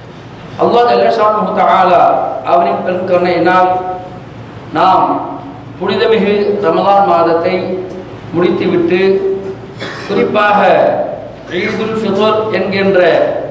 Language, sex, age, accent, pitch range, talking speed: Tamil, male, 50-69, native, 175-220 Hz, 50 wpm